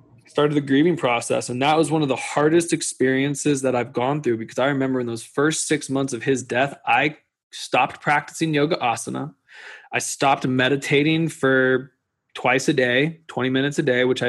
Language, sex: English, male